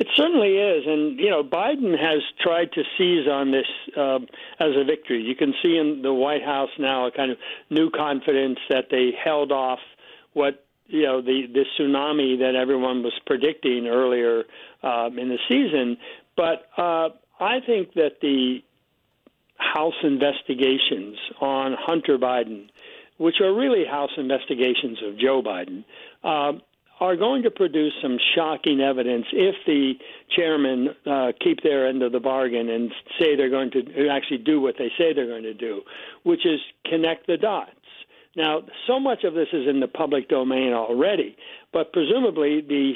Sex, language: male, English